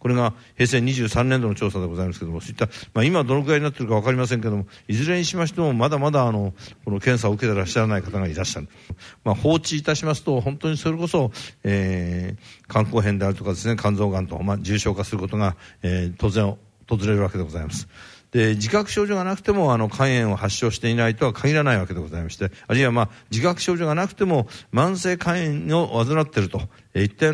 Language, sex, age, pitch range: Japanese, male, 60-79, 100-130 Hz